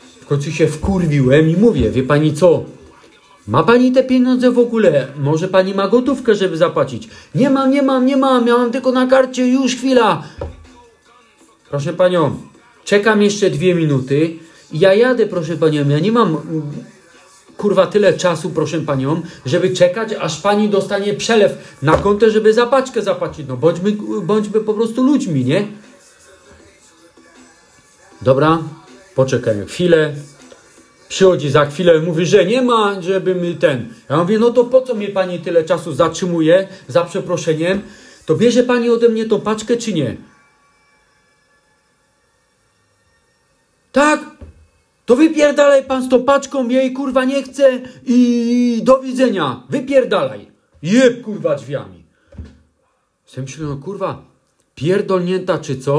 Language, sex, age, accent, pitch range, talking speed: Polish, male, 40-59, native, 160-245 Hz, 140 wpm